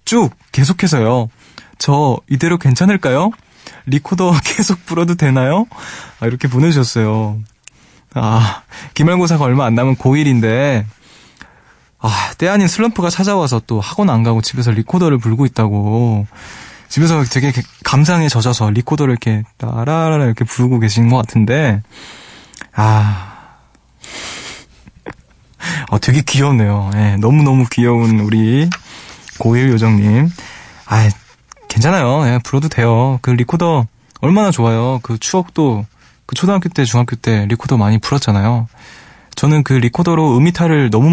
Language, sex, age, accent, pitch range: Korean, male, 20-39, native, 115-150 Hz